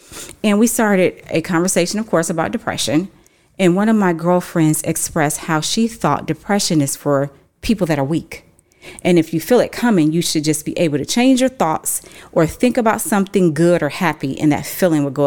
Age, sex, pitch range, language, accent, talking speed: 30-49, female, 155-220 Hz, English, American, 205 wpm